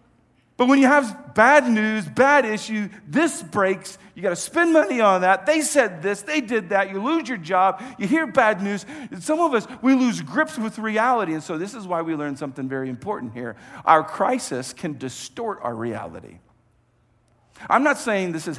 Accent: American